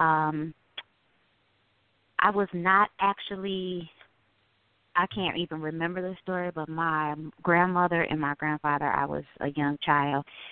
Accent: American